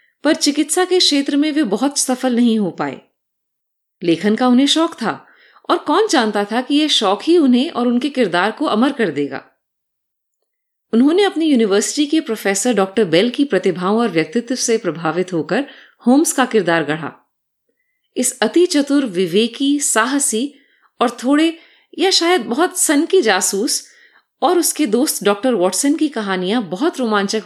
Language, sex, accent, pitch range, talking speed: Hindi, female, native, 210-305 Hz, 155 wpm